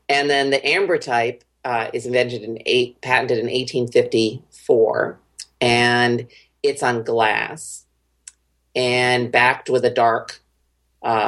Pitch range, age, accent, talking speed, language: 115-195 Hz, 40-59, American, 120 wpm, English